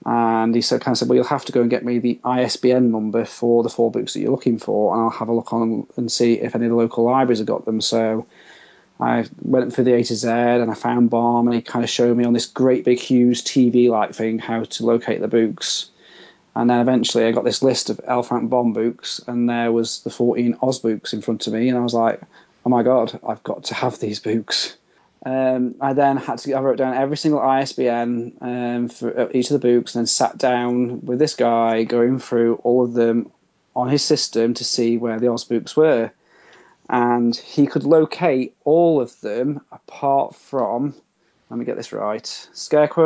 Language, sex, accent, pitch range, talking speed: English, male, British, 115-125 Hz, 225 wpm